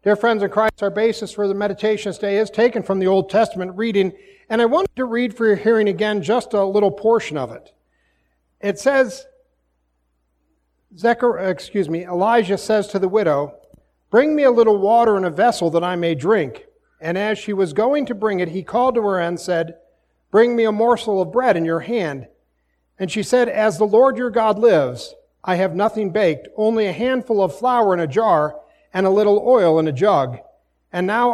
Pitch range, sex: 165-235 Hz, male